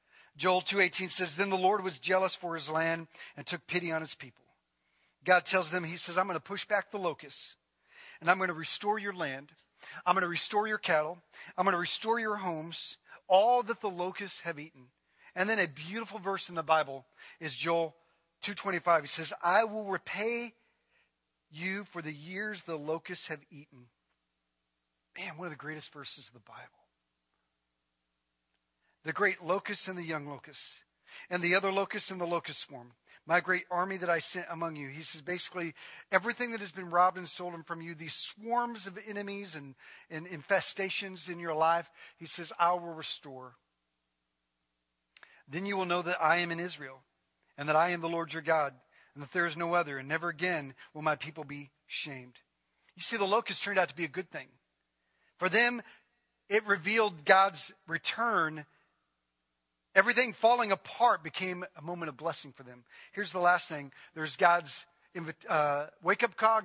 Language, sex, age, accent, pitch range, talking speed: English, male, 40-59, American, 145-190 Hz, 185 wpm